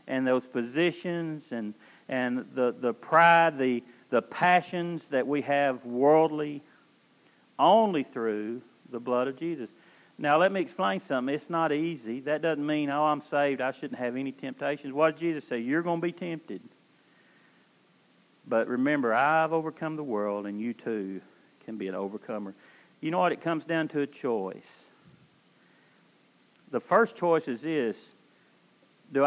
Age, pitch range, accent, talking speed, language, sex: 50-69, 120-160 Hz, American, 160 wpm, English, male